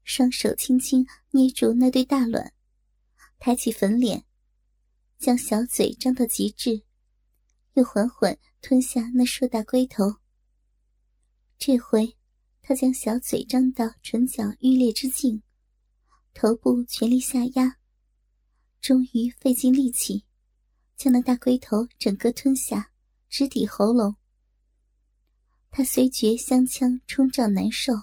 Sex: male